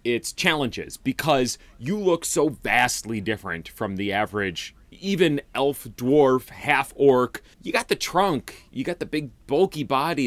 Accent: American